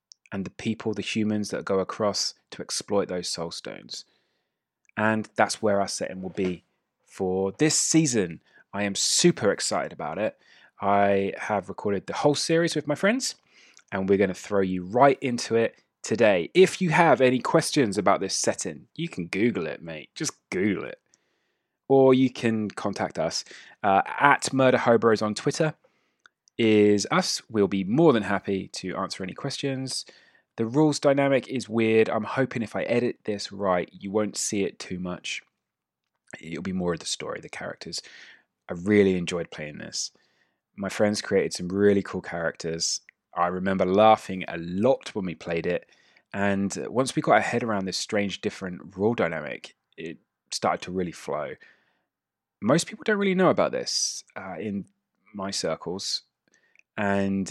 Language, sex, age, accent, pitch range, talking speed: English, male, 20-39, British, 95-130 Hz, 170 wpm